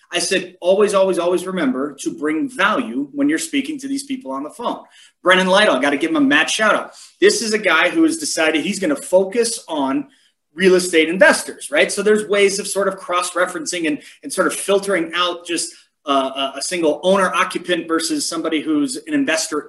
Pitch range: 165-255 Hz